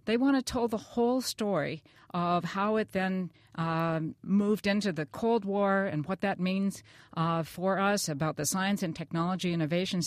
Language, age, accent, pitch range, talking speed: English, 60-79, American, 150-185 Hz, 180 wpm